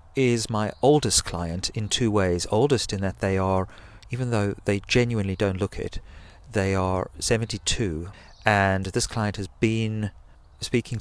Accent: British